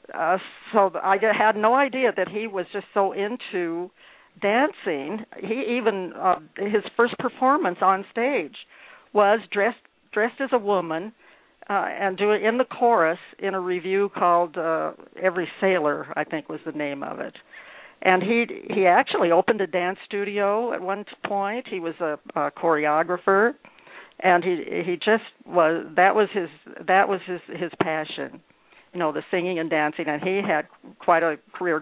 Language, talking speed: English, 170 wpm